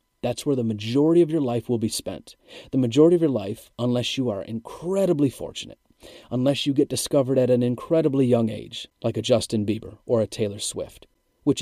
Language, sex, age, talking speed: English, male, 30-49, 195 wpm